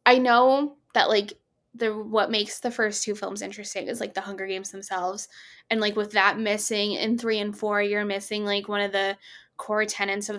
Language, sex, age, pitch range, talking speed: English, female, 10-29, 200-245 Hz, 210 wpm